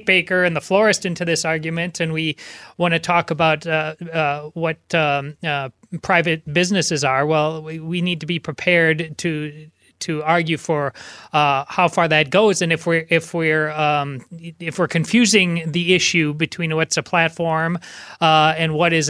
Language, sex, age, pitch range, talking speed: English, male, 30-49, 155-175 Hz, 175 wpm